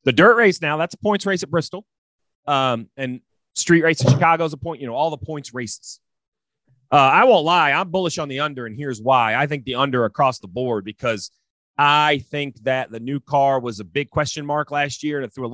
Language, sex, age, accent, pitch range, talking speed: English, male, 30-49, American, 125-190 Hz, 240 wpm